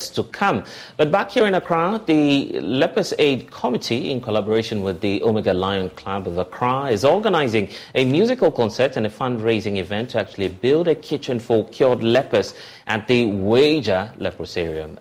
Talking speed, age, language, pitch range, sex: 165 wpm, 30-49, English, 95-120 Hz, male